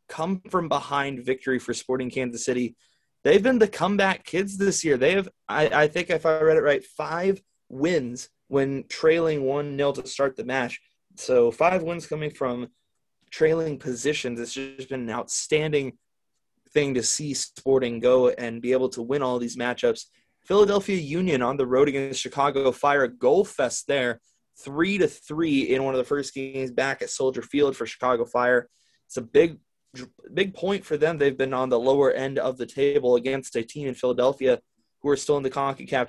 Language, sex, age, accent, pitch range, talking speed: English, male, 20-39, American, 130-155 Hz, 185 wpm